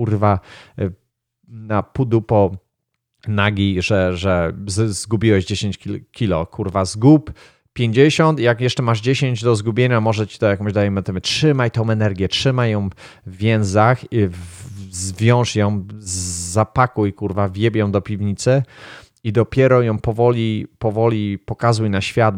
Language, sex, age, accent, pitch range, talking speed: Polish, male, 30-49, native, 100-125 Hz, 135 wpm